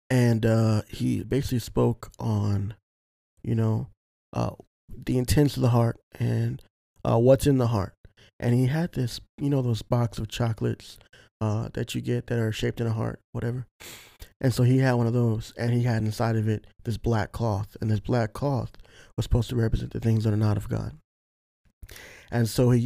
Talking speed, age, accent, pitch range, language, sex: 195 wpm, 20-39, American, 105-125 Hz, English, male